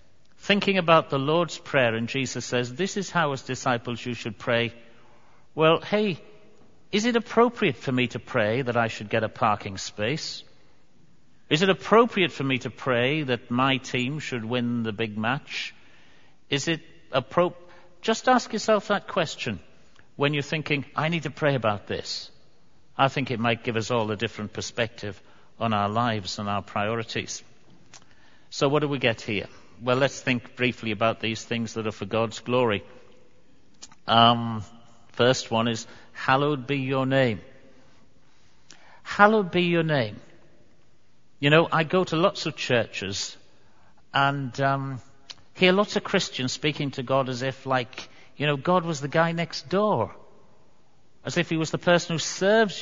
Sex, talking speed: male, 165 wpm